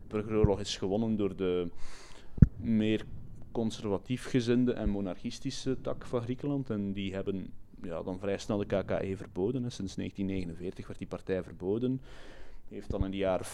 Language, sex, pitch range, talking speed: Dutch, male, 95-115 Hz, 165 wpm